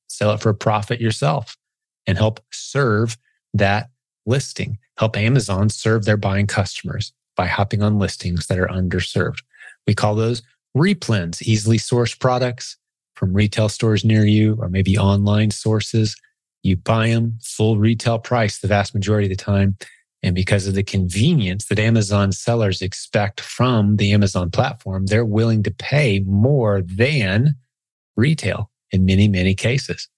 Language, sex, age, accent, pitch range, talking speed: English, male, 30-49, American, 100-120 Hz, 150 wpm